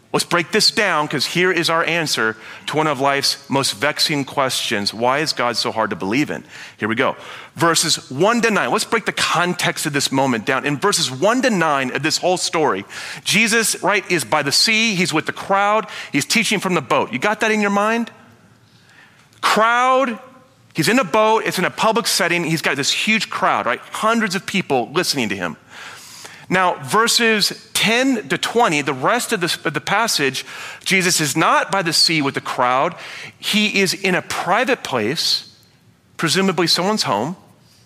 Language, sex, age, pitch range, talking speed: English, male, 40-59, 140-205 Hz, 190 wpm